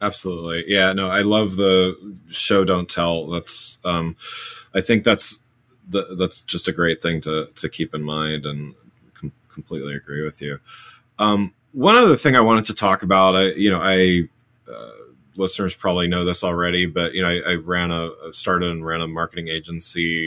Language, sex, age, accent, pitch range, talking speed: English, male, 30-49, American, 85-100 Hz, 185 wpm